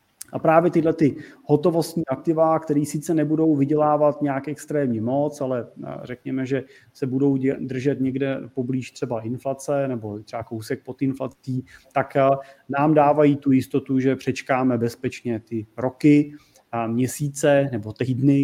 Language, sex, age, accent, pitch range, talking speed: Czech, male, 30-49, native, 120-145 Hz, 135 wpm